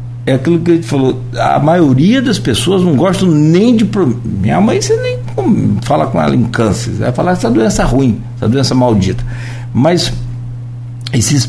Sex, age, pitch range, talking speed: male, 60-79, 120-140 Hz, 165 wpm